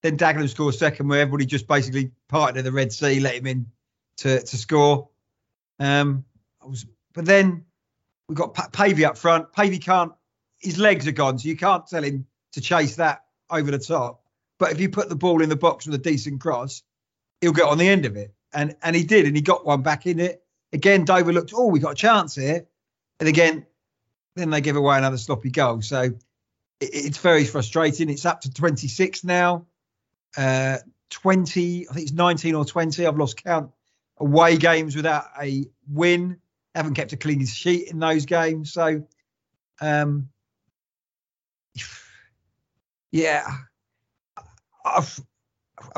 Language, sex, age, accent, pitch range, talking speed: English, male, 40-59, British, 135-170 Hz, 170 wpm